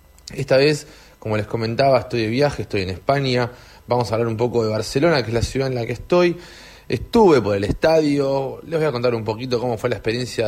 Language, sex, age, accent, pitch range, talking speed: English, male, 30-49, Argentinian, 100-130 Hz, 230 wpm